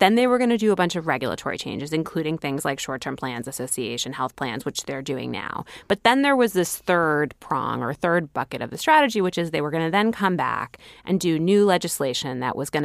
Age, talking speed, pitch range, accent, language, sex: 20-39, 245 wpm, 140-180 Hz, American, English, female